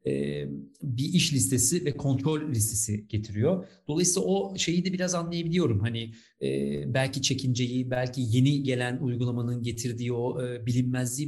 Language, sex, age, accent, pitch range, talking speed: Turkish, male, 40-59, native, 125-155 Hz, 120 wpm